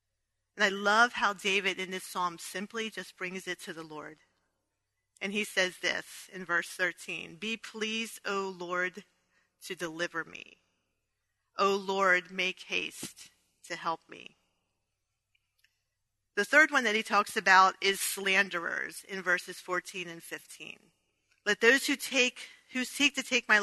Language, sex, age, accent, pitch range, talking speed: English, female, 40-59, American, 180-230 Hz, 145 wpm